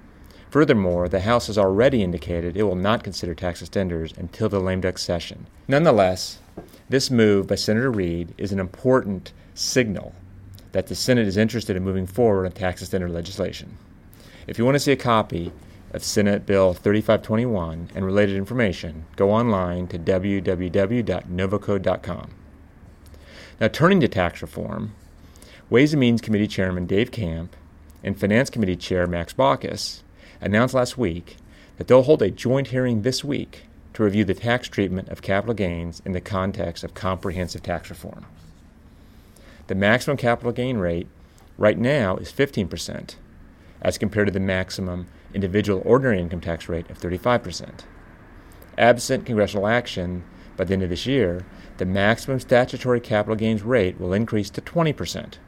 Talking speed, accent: 155 wpm, American